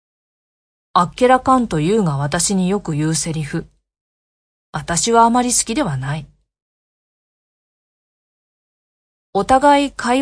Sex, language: female, Japanese